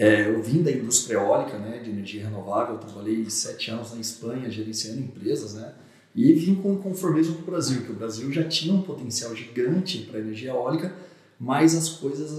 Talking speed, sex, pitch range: 195 wpm, male, 110-155 Hz